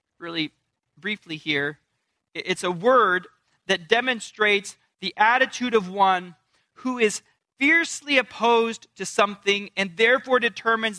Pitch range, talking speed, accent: 185-250 Hz, 115 wpm, American